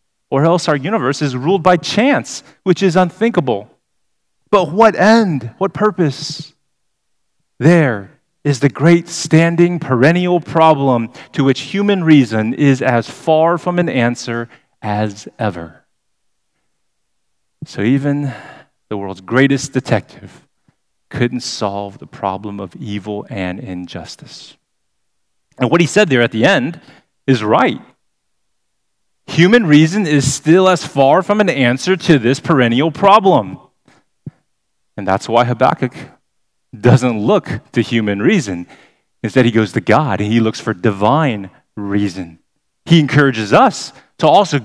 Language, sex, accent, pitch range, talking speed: English, male, American, 120-170 Hz, 130 wpm